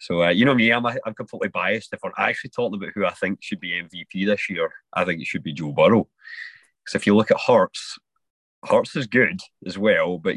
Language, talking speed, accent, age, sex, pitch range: English, 250 wpm, British, 30-49, male, 85-110 Hz